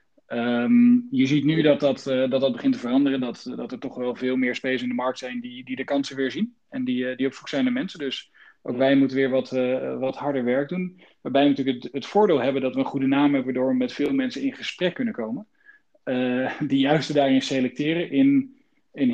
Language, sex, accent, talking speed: Dutch, male, Dutch, 250 wpm